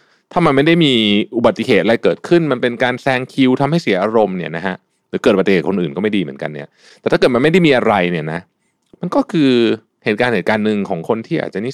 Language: Thai